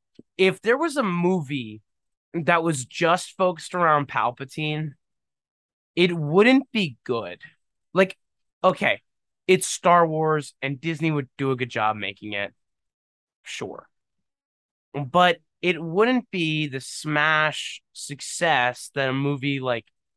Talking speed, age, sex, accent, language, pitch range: 120 wpm, 20-39, male, American, English, 115-170 Hz